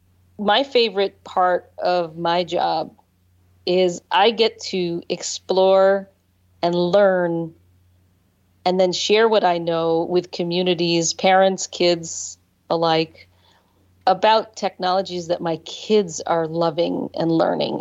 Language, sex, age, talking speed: English, female, 40-59, 110 wpm